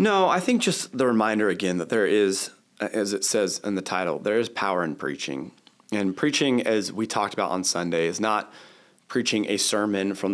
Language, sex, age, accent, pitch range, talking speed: English, male, 30-49, American, 95-110 Hz, 205 wpm